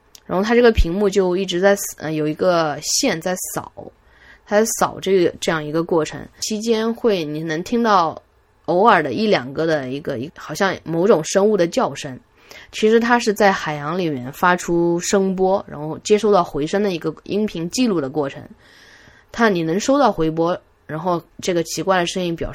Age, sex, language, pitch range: 10-29, female, Chinese, 155-200 Hz